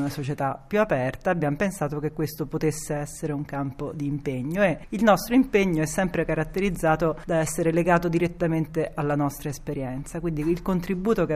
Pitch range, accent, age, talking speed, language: 155-190 Hz, native, 40-59, 170 wpm, Italian